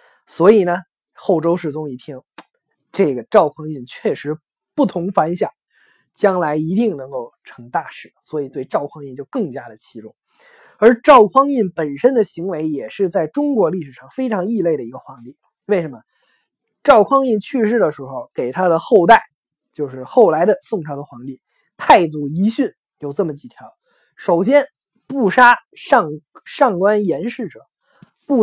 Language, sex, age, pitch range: Chinese, male, 20-39, 150-230 Hz